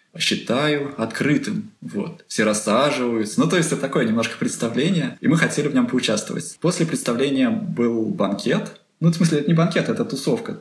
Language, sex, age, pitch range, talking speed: Russian, male, 20-39, 115-190 Hz, 170 wpm